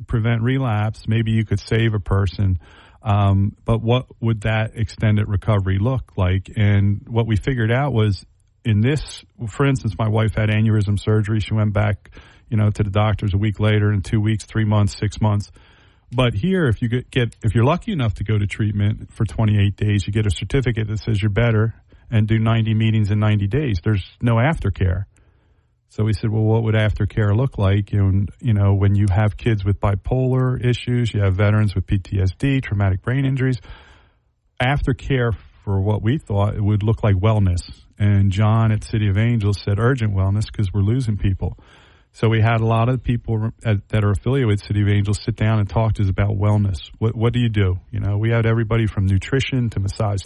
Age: 40-59